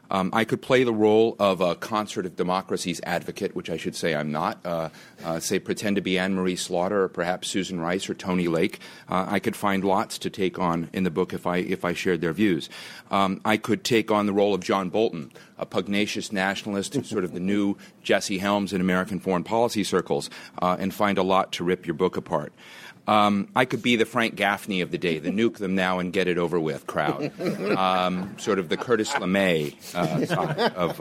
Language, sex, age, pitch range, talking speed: English, male, 40-59, 90-105 Hz, 220 wpm